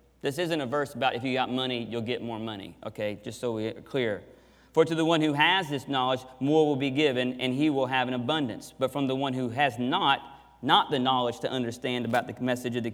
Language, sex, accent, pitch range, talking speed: English, male, American, 125-150 Hz, 245 wpm